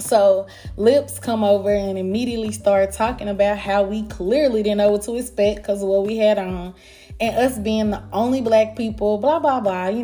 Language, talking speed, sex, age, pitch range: English, 205 wpm, female, 20-39, 195-235 Hz